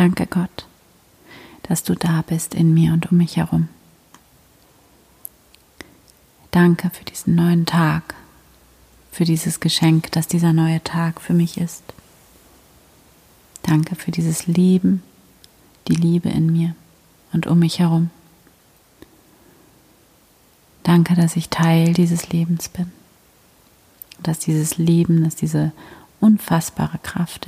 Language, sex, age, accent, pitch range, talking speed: German, female, 30-49, German, 160-175 Hz, 115 wpm